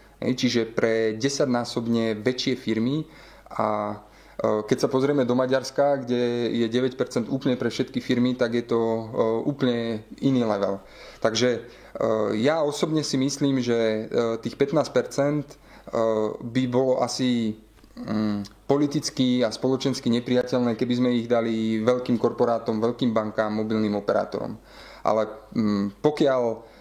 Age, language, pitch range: 20-39, Slovak, 110-125 Hz